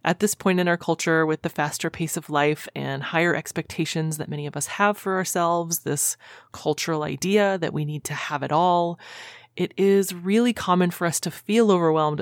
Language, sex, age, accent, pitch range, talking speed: English, female, 30-49, American, 145-180 Hz, 200 wpm